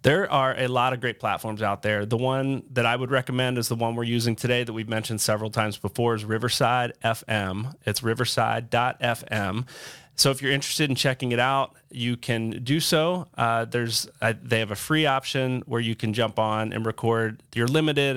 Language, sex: English, male